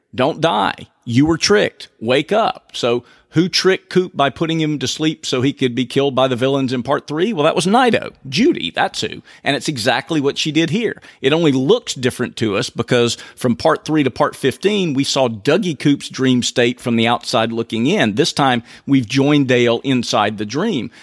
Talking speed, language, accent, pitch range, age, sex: 210 wpm, English, American, 120-140 Hz, 50-69, male